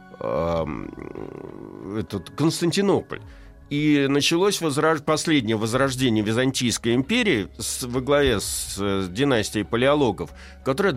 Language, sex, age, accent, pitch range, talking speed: Russian, male, 60-79, native, 110-170 Hz, 75 wpm